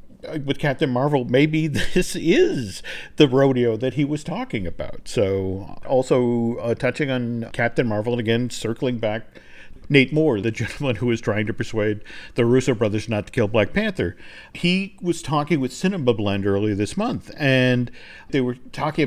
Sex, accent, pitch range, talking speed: male, American, 120-160 Hz, 170 wpm